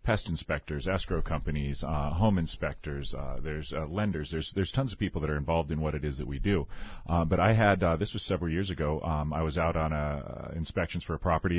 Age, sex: 40-59, male